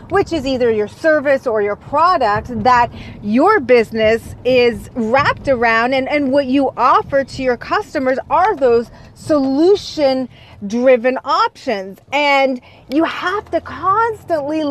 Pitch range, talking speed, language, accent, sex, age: 245-320 Hz, 125 wpm, English, American, female, 30-49